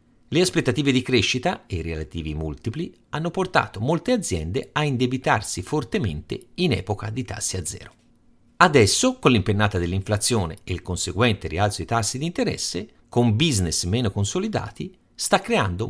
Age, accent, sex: 50-69, native, male